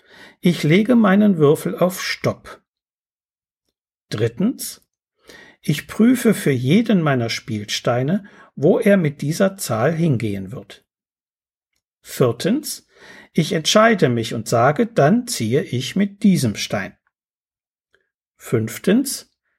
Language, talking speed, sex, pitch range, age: German, 100 wpm, male, 125-205 Hz, 60-79